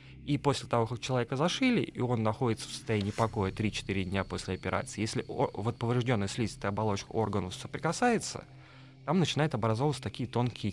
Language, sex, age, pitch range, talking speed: Russian, male, 20-39, 100-130 Hz, 150 wpm